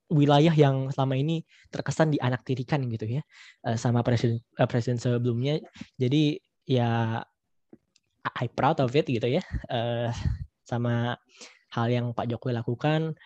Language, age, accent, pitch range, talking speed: Indonesian, 20-39, native, 120-145 Hz, 130 wpm